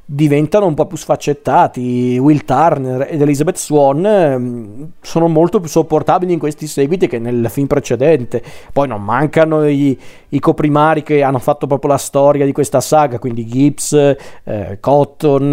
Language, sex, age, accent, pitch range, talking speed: Italian, male, 40-59, native, 130-155 Hz, 155 wpm